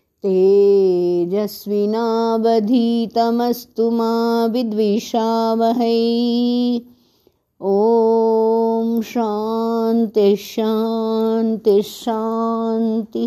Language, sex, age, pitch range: Hindi, female, 50-69, 195-255 Hz